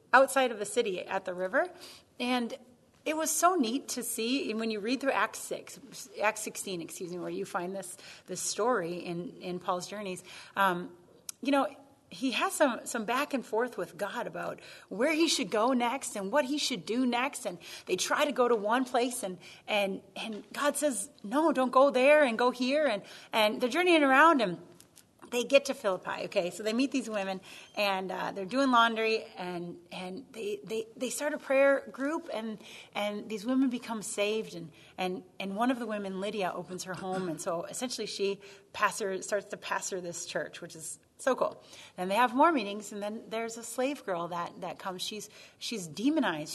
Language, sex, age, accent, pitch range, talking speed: English, female, 30-49, American, 195-270 Hz, 200 wpm